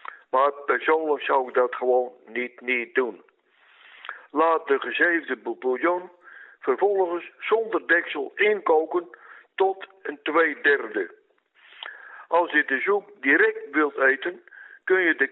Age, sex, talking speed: 60-79, male, 120 wpm